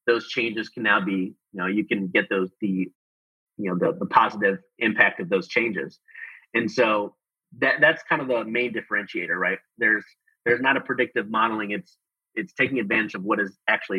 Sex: male